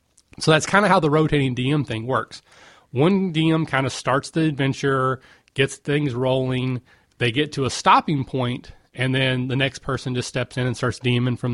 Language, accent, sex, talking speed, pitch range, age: English, American, male, 200 wpm, 120-145 Hz, 30-49